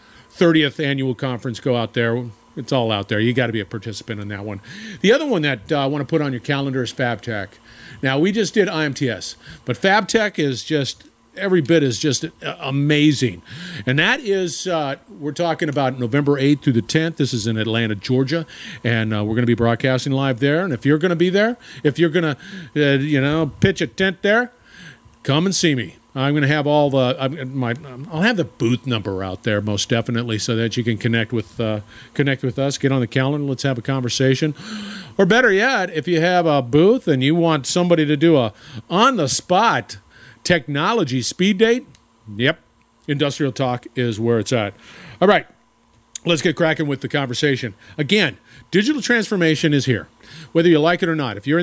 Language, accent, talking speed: English, American, 205 wpm